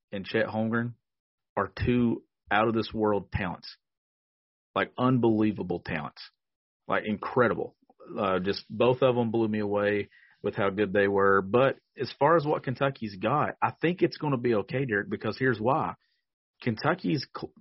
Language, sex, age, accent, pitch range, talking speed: English, male, 40-59, American, 105-125 Hz, 150 wpm